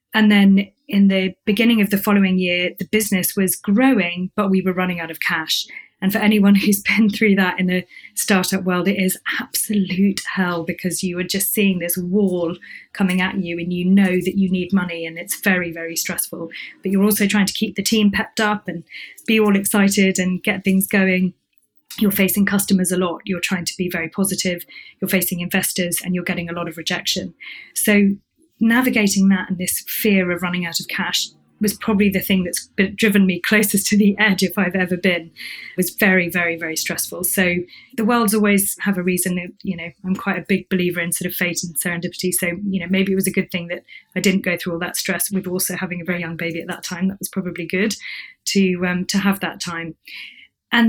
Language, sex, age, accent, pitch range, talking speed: English, female, 20-39, British, 180-205 Hz, 220 wpm